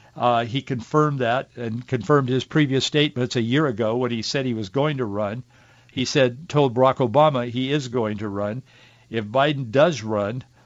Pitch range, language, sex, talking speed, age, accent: 120-140 Hz, English, male, 190 wpm, 60-79, American